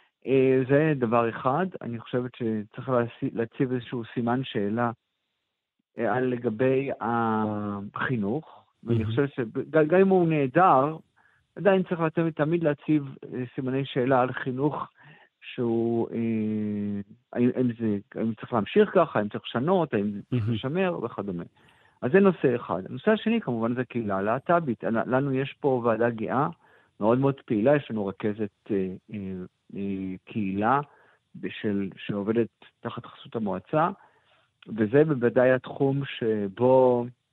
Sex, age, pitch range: male, 50-69, 110-145 Hz